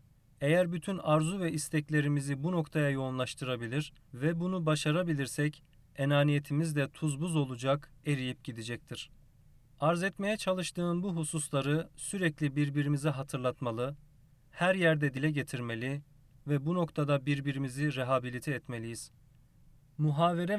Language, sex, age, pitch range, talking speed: Turkish, male, 40-59, 135-155 Hz, 110 wpm